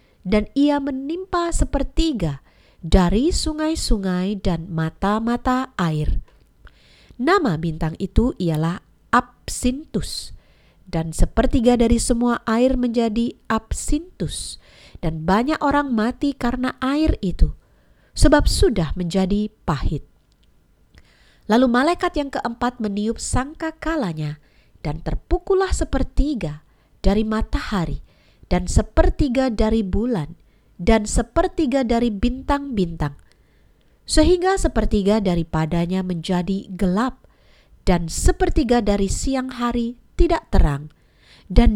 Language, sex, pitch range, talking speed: Indonesian, female, 190-285 Hz, 90 wpm